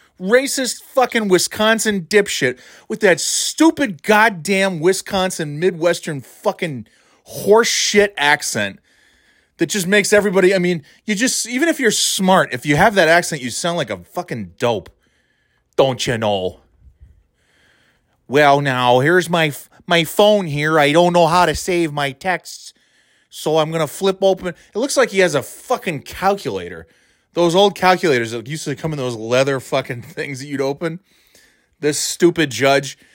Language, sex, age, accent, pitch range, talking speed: English, male, 30-49, American, 150-210 Hz, 155 wpm